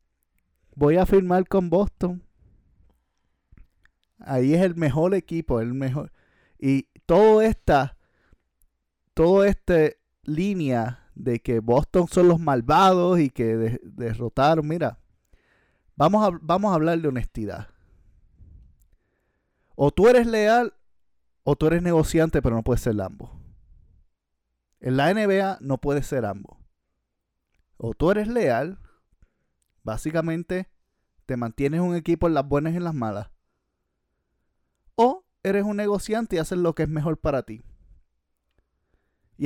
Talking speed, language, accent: 125 wpm, Spanish, Venezuelan